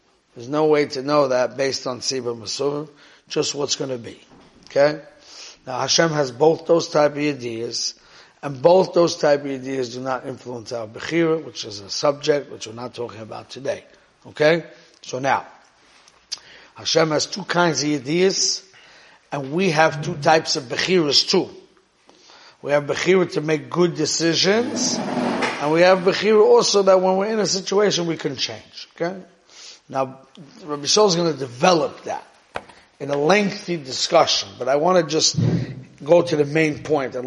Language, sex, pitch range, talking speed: English, male, 135-180 Hz, 170 wpm